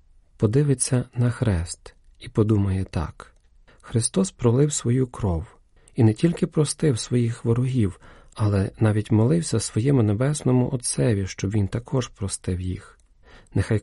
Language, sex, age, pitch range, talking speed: Ukrainian, male, 40-59, 95-120 Hz, 120 wpm